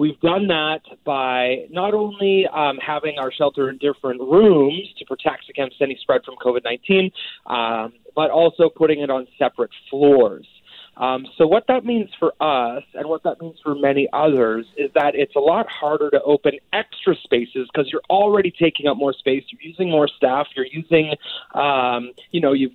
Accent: American